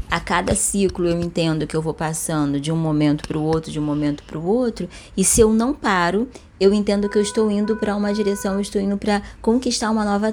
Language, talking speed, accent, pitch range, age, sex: Portuguese, 245 wpm, Brazilian, 170-215 Hz, 20-39, female